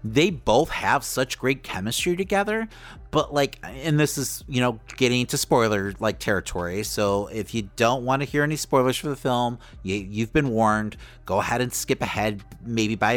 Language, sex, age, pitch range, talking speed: English, male, 30-49, 120-175 Hz, 185 wpm